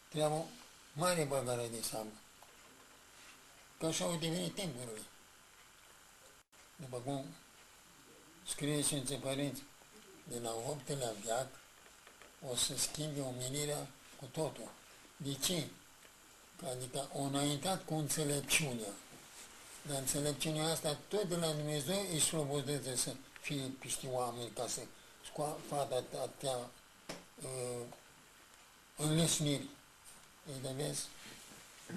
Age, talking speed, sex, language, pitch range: 60-79, 100 wpm, male, Romanian, 130-165 Hz